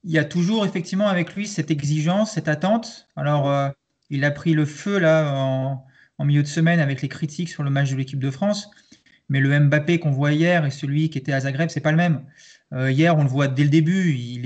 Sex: male